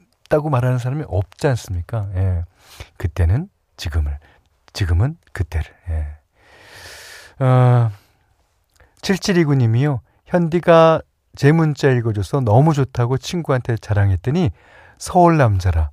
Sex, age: male, 40-59